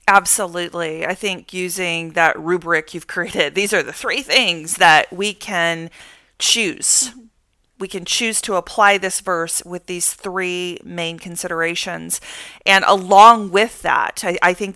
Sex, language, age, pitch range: female, English, 40-59, 180-235 Hz